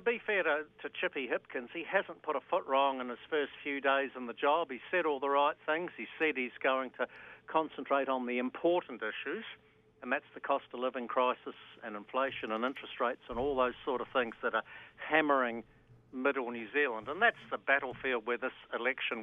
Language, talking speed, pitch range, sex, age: English, 210 wpm, 125-145 Hz, male, 50-69